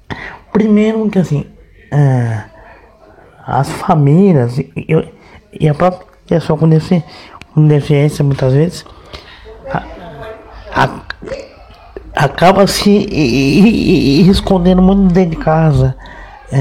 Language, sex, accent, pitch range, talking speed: Portuguese, male, Brazilian, 140-180 Hz, 110 wpm